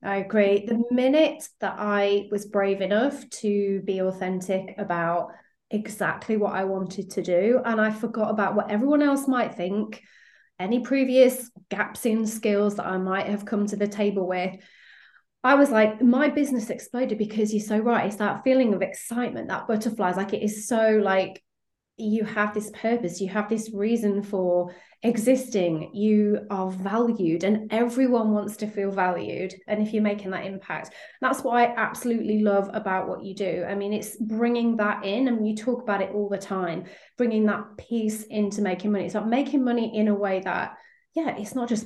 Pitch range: 195-235 Hz